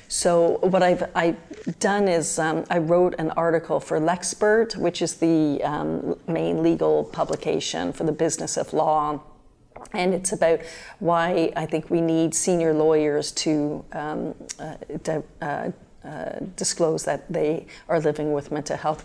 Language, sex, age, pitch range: English, female, 40-59, 155-180 Hz